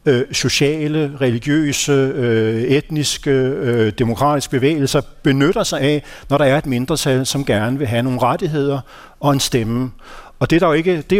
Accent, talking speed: native, 160 wpm